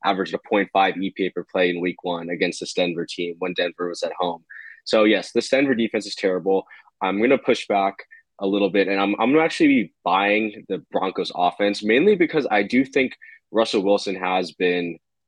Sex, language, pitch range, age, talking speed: male, English, 90-105 Hz, 20-39, 205 wpm